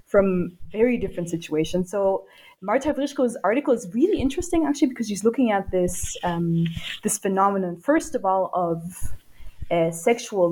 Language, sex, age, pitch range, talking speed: English, female, 20-39, 175-240 Hz, 150 wpm